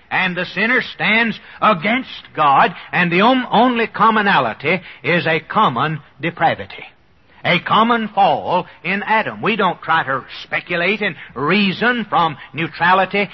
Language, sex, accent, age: English, male, American, 60-79